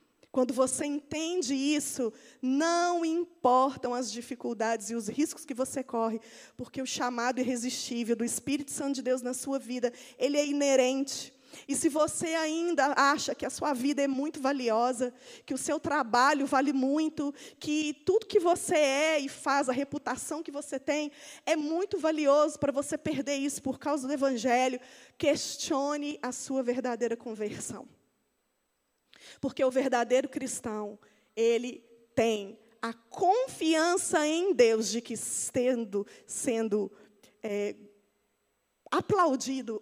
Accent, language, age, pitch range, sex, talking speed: Brazilian, Portuguese, 20-39, 235-295 Hz, female, 135 wpm